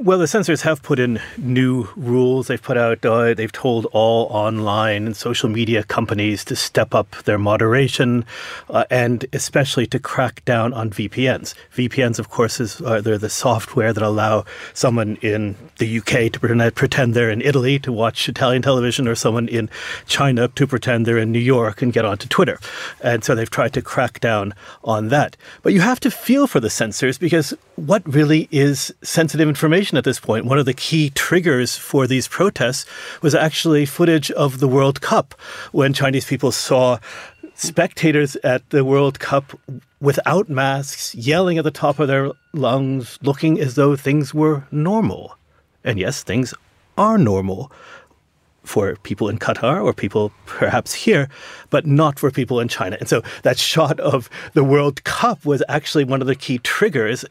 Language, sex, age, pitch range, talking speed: English, male, 40-59, 120-145 Hz, 175 wpm